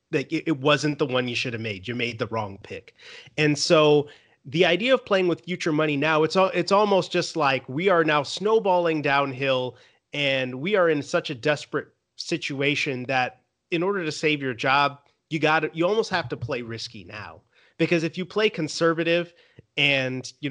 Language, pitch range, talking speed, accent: English, 125-160 Hz, 195 wpm, American